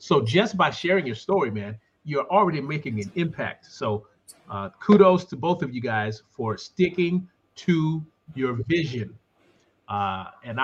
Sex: male